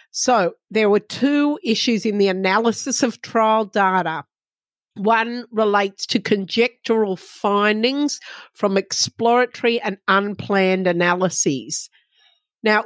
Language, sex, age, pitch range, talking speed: English, female, 50-69, 190-225 Hz, 105 wpm